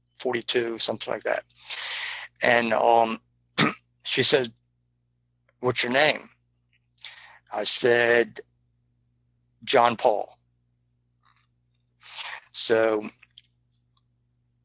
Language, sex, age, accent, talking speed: English, male, 60-79, American, 65 wpm